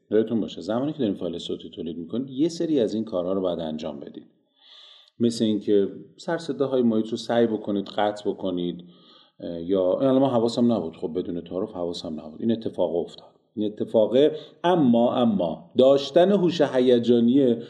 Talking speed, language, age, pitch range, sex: 155 wpm, Persian, 40-59, 110-145 Hz, male